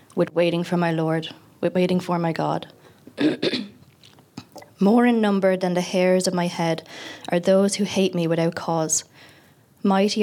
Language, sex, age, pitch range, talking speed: English, female, 20-39, 165-190 Hz, 160 wpm